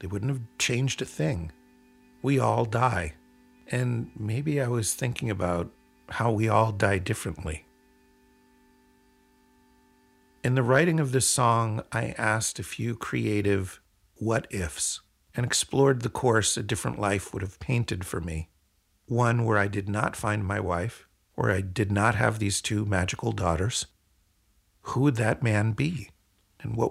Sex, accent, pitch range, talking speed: male, American, 95-125 Hz, 155 wpm